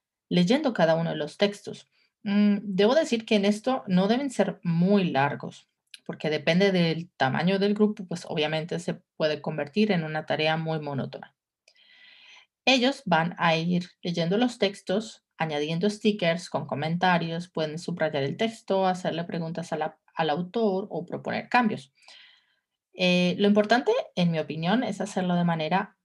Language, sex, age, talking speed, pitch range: Spanish, female, 30-49, 150 wpm, 165-205 Hz